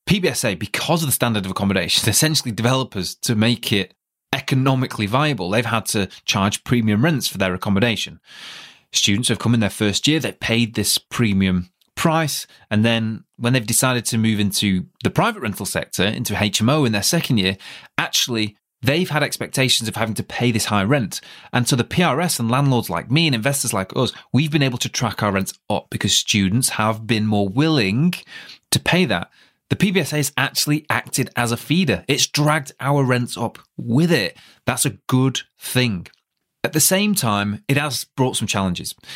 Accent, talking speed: British, 185 wpm